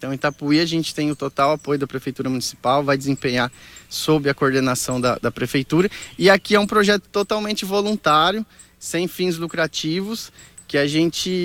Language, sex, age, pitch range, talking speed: Portuguese, male, 20-39, 140-180 Hz, 175 wpm